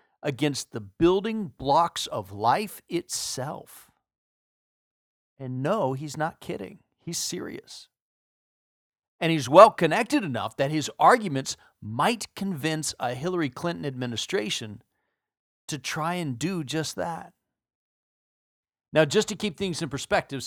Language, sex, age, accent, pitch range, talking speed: English, male, 40-59, American, 130-195 Hz, 120 wpm